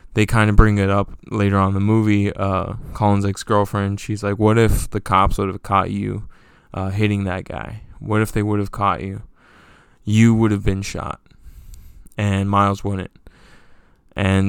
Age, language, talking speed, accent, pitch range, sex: 20-39, English, 180 wpm, American, 100-115 Hz, male